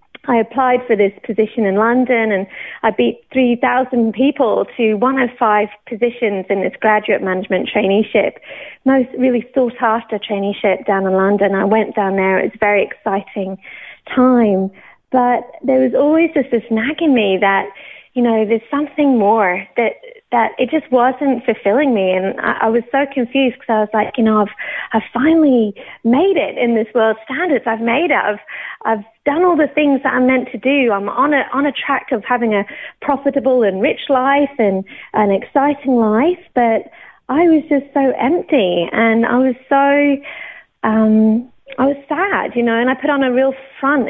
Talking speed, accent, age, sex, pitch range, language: 185 wpm, British, 30-49, female, 210-265 Hz, English